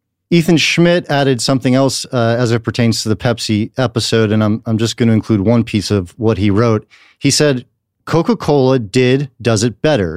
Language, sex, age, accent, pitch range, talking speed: English, male, 40-59, American, 110-140 Hz, 195 wpm